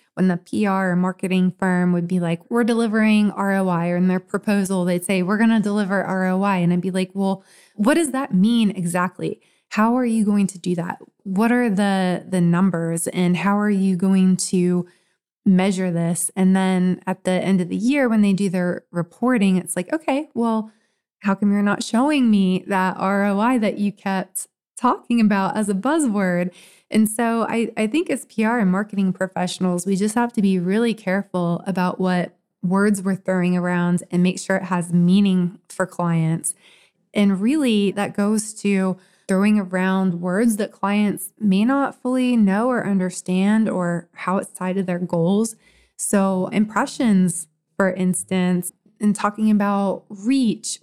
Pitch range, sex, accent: 185-215 Hz, female, American